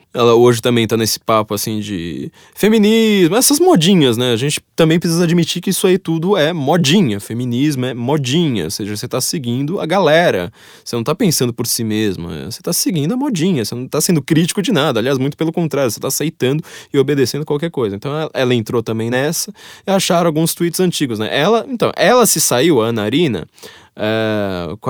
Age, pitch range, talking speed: 20-39, 120-190 Hz, 200 wpm